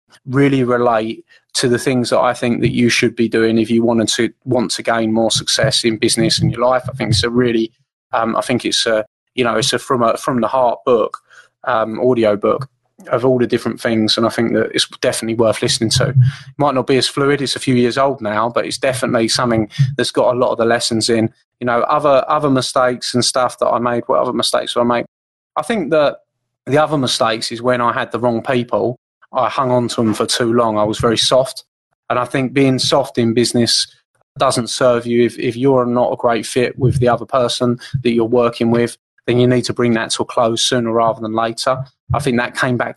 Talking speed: 240 wpm